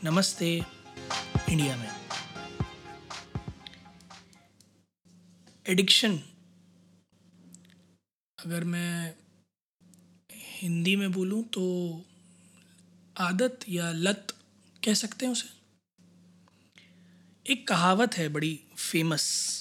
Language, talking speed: Hindi, 65 wpm